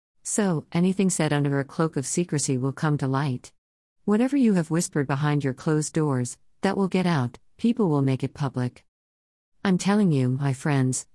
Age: 50-69